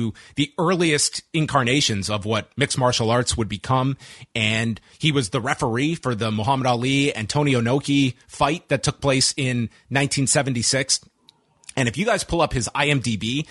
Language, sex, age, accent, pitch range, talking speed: English, male, 30-49, American, 115-150 Hz, 160 wpm